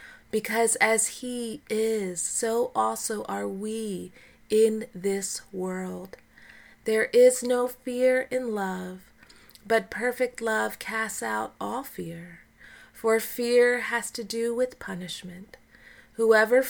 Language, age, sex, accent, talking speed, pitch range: English, 30-49, female, American, 115 wpm, 185-230 Hz